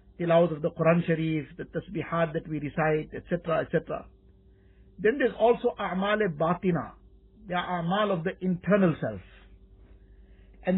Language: English